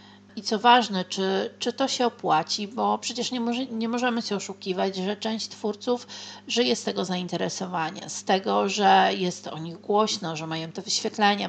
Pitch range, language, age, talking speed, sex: 175-210 Hz, Polish, 40-59, 180 wpm, female